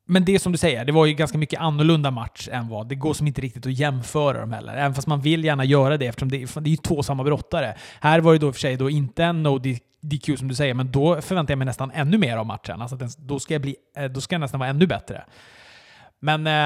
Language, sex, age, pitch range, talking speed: Swedish, male, 30-49, 130-160 Hz, 290 wpm